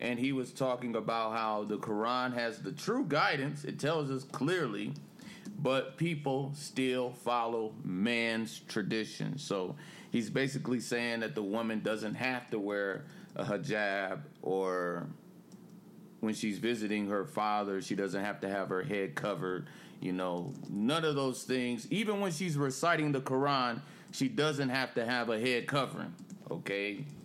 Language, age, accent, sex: English, 30-49, American, male